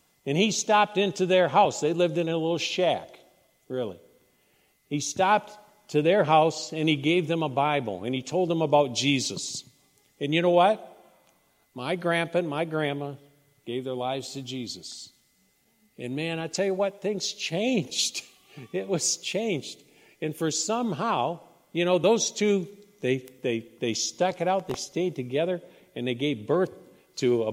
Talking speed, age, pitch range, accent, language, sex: 170 wpm, 50-69, 145-190 Hz, American, English, male